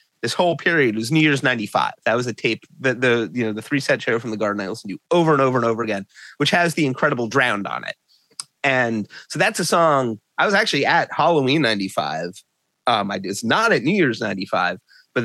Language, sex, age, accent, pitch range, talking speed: English, male, 30-49, American, 115-170 Hz, 230 wpm